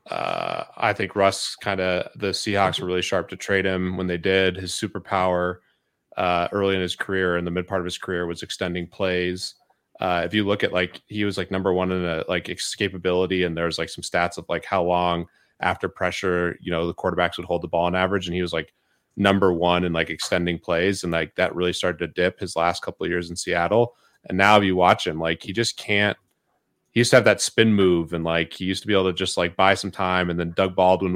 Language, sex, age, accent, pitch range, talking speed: English, male, 30-49, American, 85-95 Hz, 245 wpm